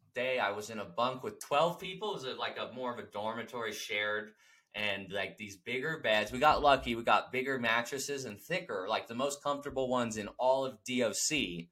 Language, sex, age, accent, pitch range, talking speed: English, male, 20-39, American, 105-145 Hz, 210 wpm